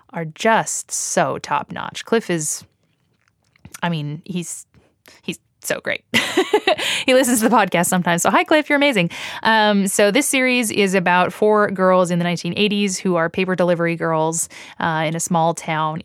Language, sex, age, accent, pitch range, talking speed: English, female, 20-39, American, 165-215 Hz, 165 wpm